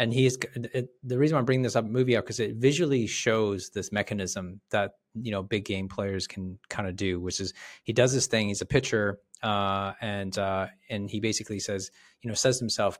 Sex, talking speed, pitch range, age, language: male, 230 wpm, 105-125 Hz, 30-49, English